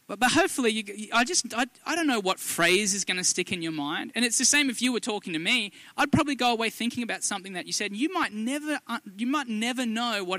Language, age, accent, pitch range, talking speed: English, 20-39, Australian, 160-245 Hz, 260 wpm